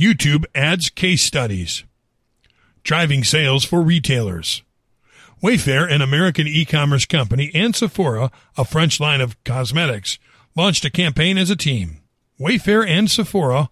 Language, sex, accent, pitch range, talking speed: English, male, American, 135-185 Hz, 125 wpm